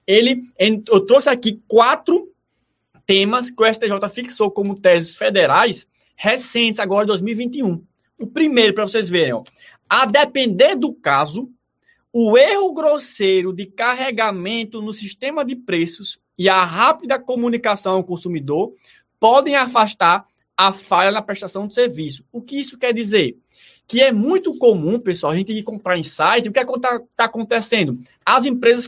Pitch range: 200-270 Hz